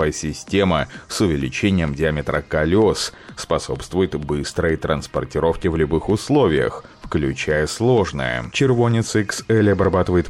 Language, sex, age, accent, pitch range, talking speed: Russian, male, 30-49, native, 80-100 Hz, 95 wpm